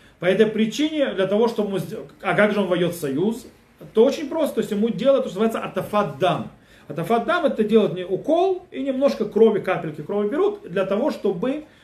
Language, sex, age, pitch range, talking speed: Russian, male, 30-49, 165-235 Hz, 195 wpm